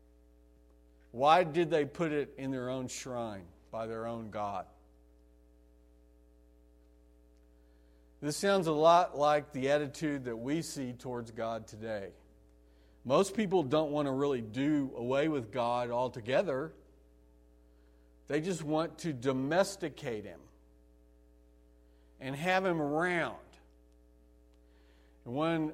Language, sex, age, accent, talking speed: English, male, 50-69, American, 110 wpm